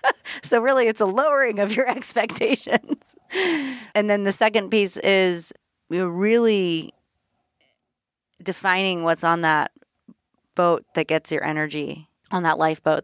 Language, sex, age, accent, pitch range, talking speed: English, female, 30-49, American, 150-180 Hz, 130 wpm